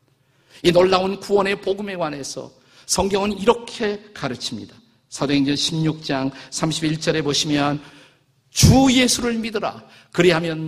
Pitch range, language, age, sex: 130-185 Hz, Korean, 50-69, male